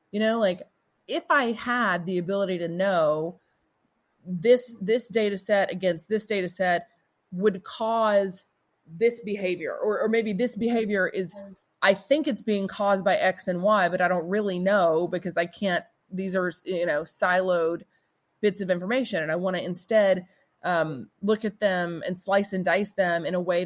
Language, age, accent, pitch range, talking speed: English, 30-49, American, 175-220 Hz, 175 wpm